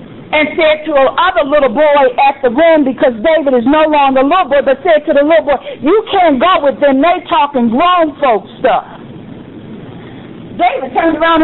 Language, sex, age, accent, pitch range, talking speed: English, female, 50-69, American, 255-340 Hz, 195 wpm